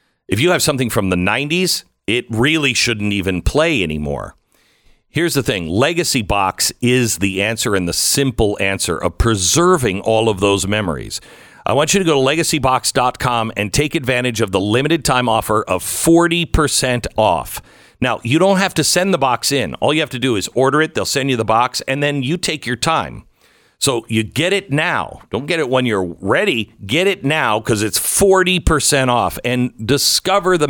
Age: 50-69